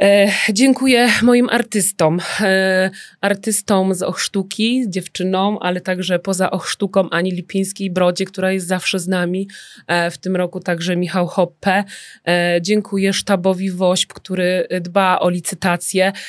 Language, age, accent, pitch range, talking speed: Polish, 20-39, native, 180-200 Hz, 130 wpm